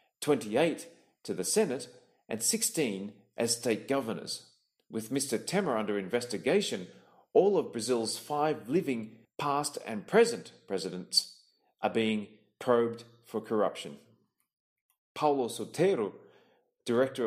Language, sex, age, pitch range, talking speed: English, male, 40-59, 110-155 Hz, 110 wpm